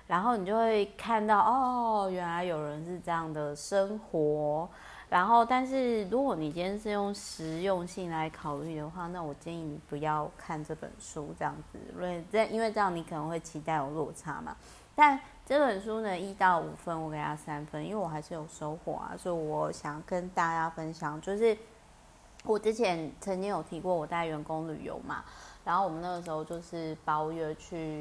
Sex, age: female, 30-49